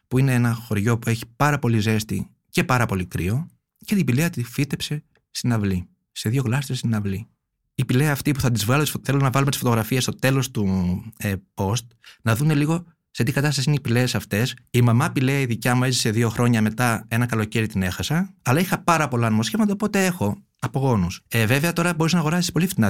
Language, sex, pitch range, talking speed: Greek, male, 115-155 Hz, 215 wpm